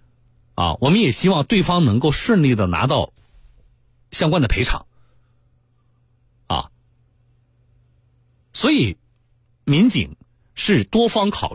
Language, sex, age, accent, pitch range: Chinese, male, 50-69, native, 120-145 Hz